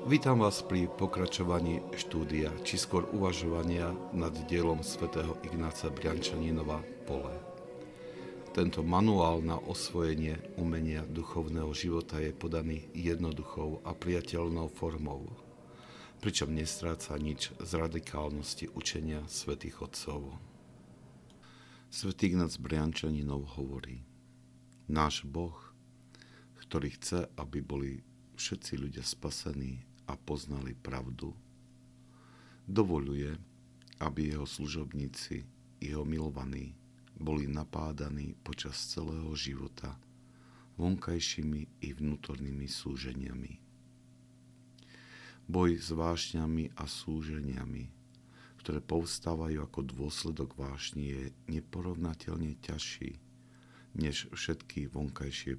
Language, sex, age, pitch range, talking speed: Slovak, male, 50-69, 70-85 Hz, 90 wpm